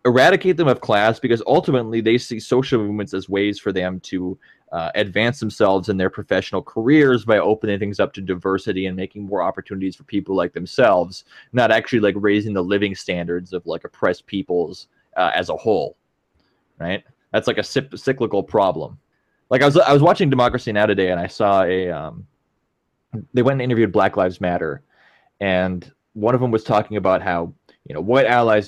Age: 20-39